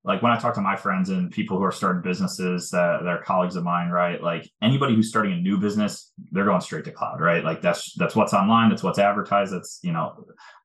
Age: 20-39